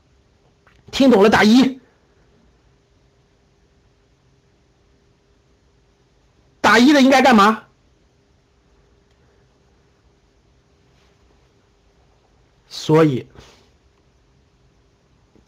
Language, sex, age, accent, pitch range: Chinese, male, 50-69, native, 165-260 Hz